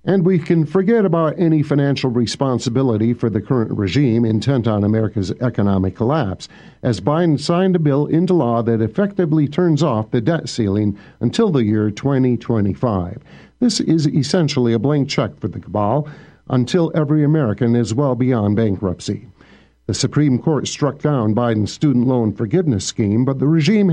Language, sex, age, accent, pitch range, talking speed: English, male, 50-69, American, 115-155 Hz, 160 wpm